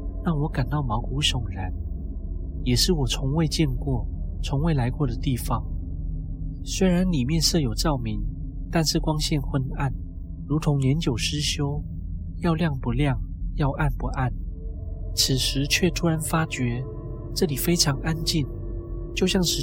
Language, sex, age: Chinese, male, 30-49